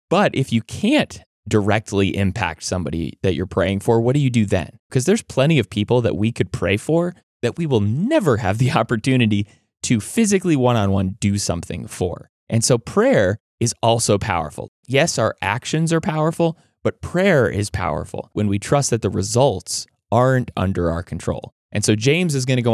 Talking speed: 185 wpm